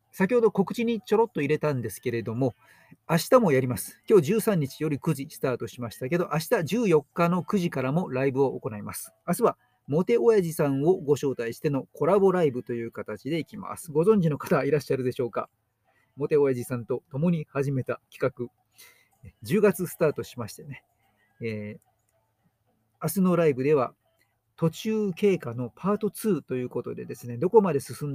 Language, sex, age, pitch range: Japanese, male, 40-59, 125-180 Hz